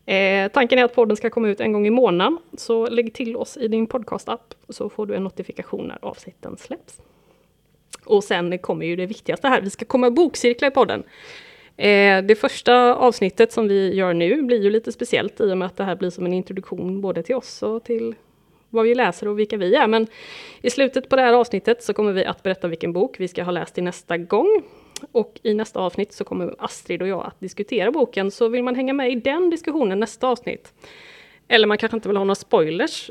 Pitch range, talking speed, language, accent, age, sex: 195-245 Hz, 225 wpm, English, Swedish, 30-49, female